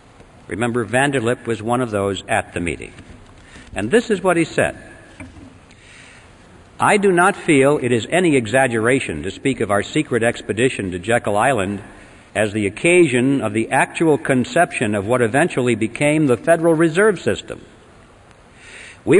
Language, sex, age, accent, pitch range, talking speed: English, male, 60-79, American, 115-150 Hz, 150 wpm